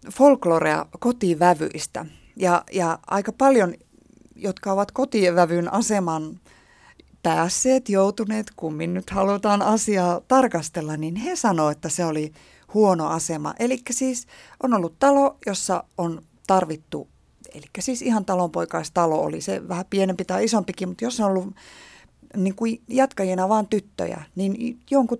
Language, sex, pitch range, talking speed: Finnish, female, 165-215 Hz, 130 wpm